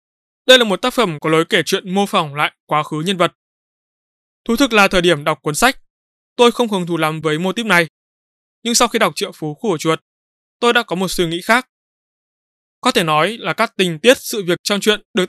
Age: 20-39